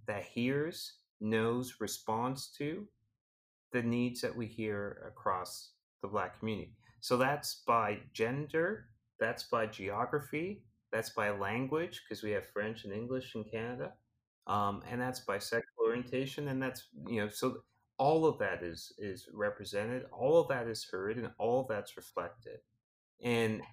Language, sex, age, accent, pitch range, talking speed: English, male, 30-49, American, 110-130 Hz, 150 wpm